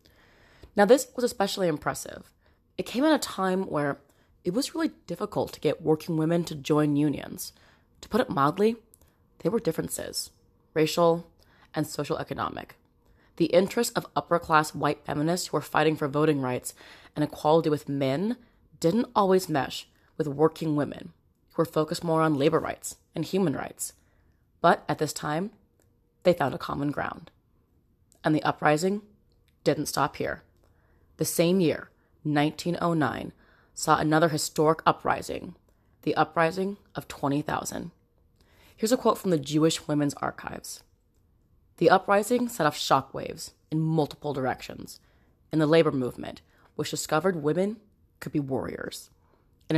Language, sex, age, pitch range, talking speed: English, female, 20-39, 145-175 Hz, 145 wpm